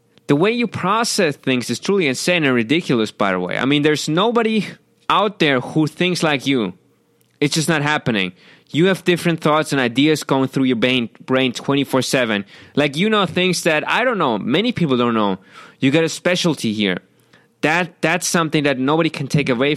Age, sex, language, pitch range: 20-39, male, English, 130-175 Hz